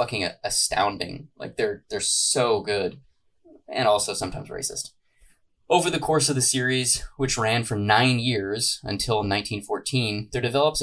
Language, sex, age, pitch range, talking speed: English, male, 20-39, 110-135 Hz, 145 wpm